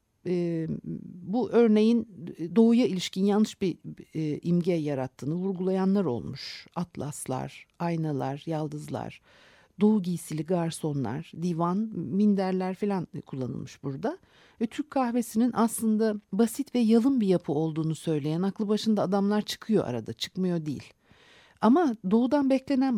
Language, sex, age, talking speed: Turkish, female, 60-79, 110 wpm